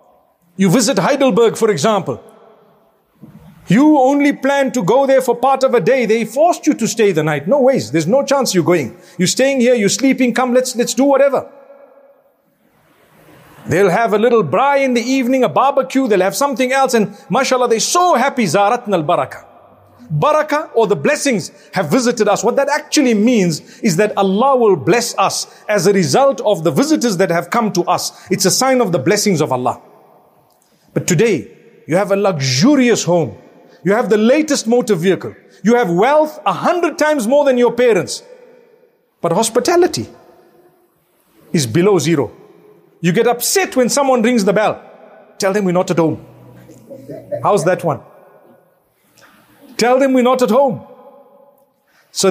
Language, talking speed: English, 170 wpm